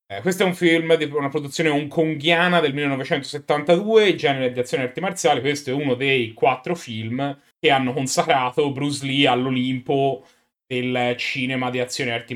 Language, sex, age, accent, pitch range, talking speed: Italian, male, 30-49, native, 125-165 Hz, 165 wpm